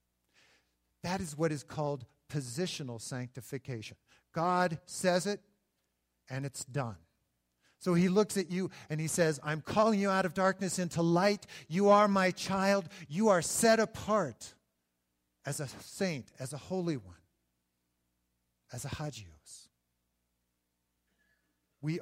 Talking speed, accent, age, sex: 130 wpm, American, 50-69, male